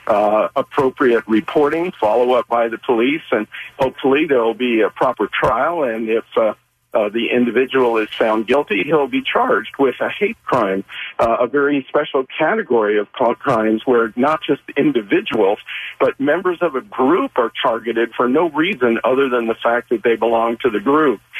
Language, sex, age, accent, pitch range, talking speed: English, male, 50-69, American, 115-150 Hz, 175 wpm